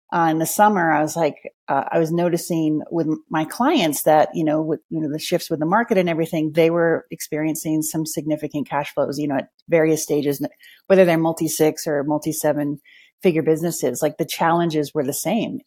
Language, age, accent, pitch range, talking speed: English, 30-49, American, 150-180 Hz, 200 wpm